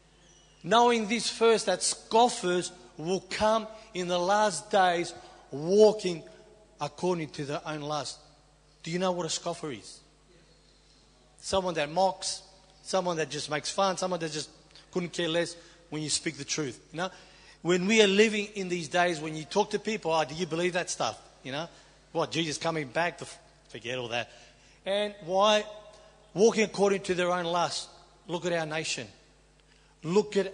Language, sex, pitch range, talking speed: English, male, 155-195 Hz, 170 wpm